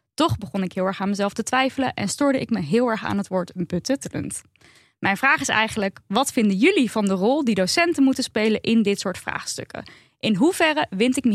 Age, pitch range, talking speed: 10-29, 205-275 Hz, 220 wpm